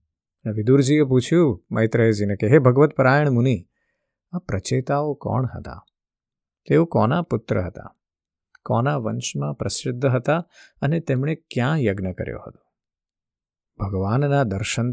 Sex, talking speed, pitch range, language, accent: male, 45 wpm, 105-135 Hz, Gujarati, native